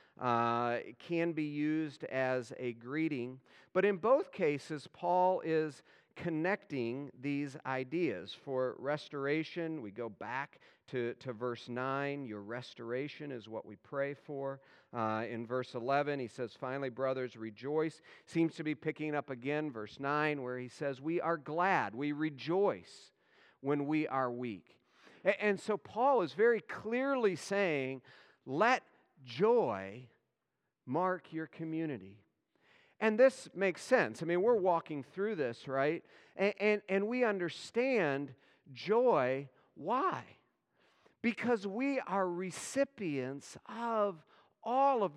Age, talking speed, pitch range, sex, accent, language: 50-69, 130 wpm, 135-200 Hz, male, American, English